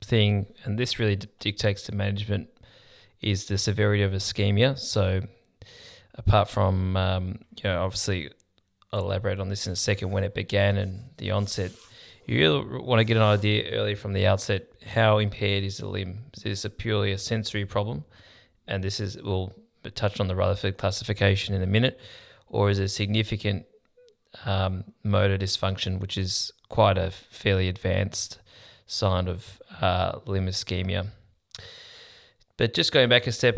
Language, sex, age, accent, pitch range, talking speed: English, male, 20-39, Australian, 95-105 Hz, 165 wpm